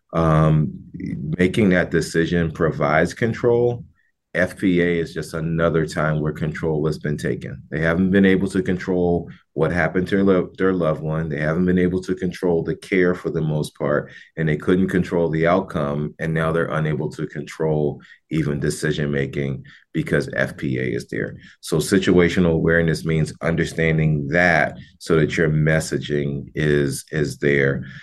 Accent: American